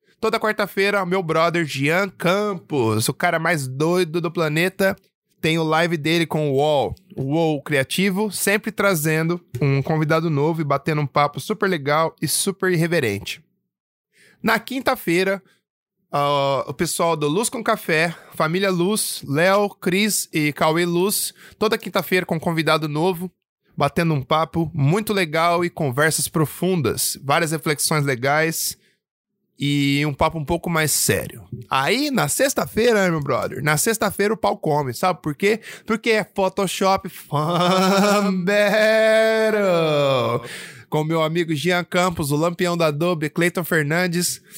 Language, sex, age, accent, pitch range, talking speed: Portuguese, male, 20-39, Brazilian, 155-190 Hz, 140 wpm